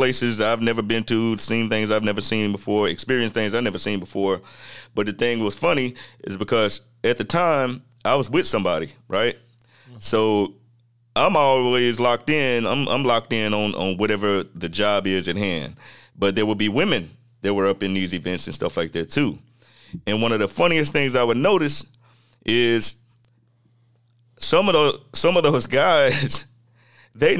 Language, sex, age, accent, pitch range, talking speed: English, male, 30-49, American, 105-120 Hz, 180 wpm